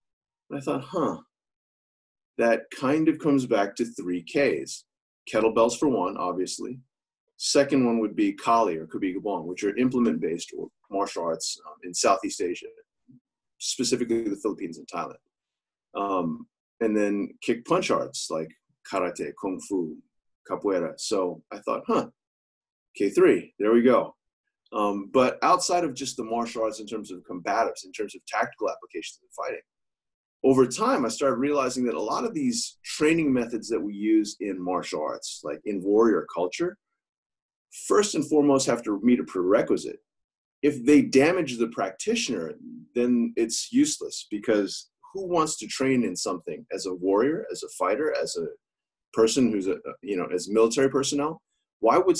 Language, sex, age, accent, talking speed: English, male, 30-49, American, 155 wpm